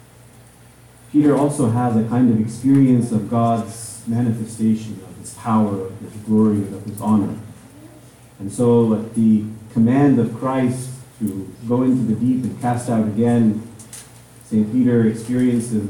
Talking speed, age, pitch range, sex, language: 145 wpm, 40-59, 110-125 Hz, male, English